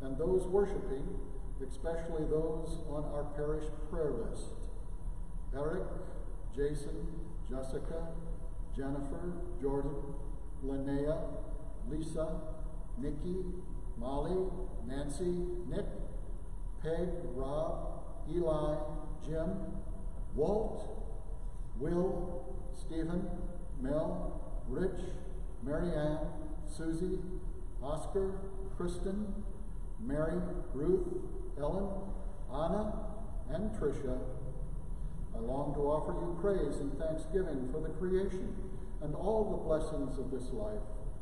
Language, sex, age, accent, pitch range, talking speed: English, male, 60-79, American, 140-175 Hz, 85 wpm